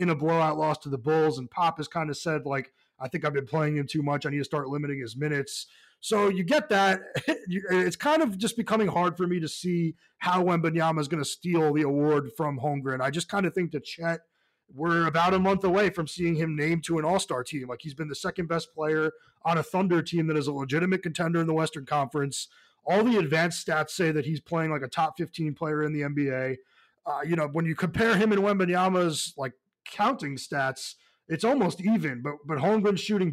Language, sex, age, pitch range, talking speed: English, male, 20-39, 150-185 Hz, 230 wpm